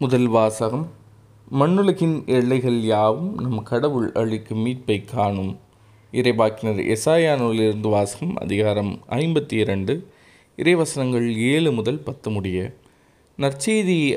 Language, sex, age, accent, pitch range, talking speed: Tamil, male, 20-39, native, 110-140 Hz, 95 wpm